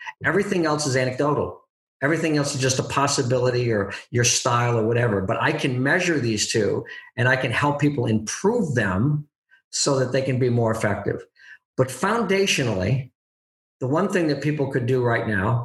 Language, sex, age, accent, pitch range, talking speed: English, male, 50-69, American, 115-150 Hz, 175 wpm